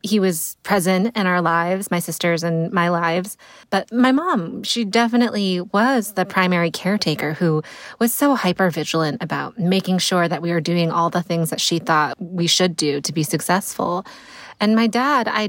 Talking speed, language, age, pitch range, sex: 185 wpm, English, 20-39, 170-215 Hz, female